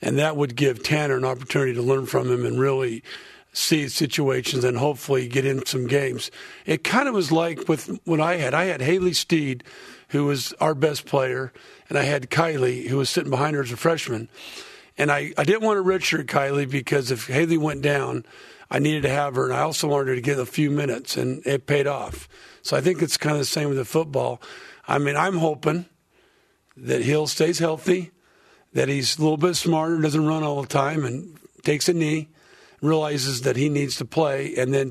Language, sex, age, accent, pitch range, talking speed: English, male, 50-69, American, 135-160 Hz, 215 wpm